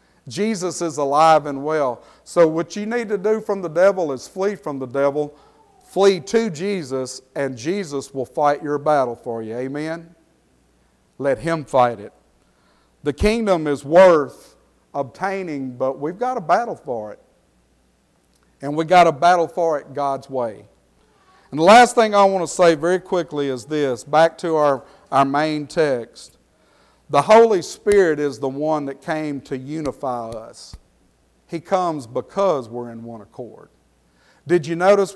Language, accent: English, American